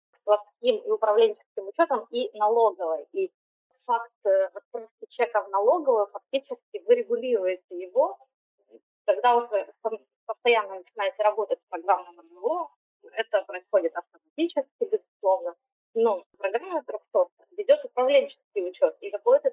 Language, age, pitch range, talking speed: Ukrainian, 20-39, 200-300 Hz, 110 wpm